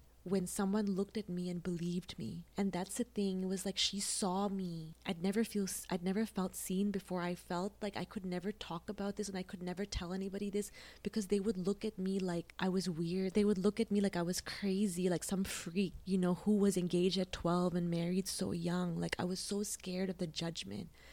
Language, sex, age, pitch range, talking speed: English, female, 20-39, 180-200 Hz, 230 wpm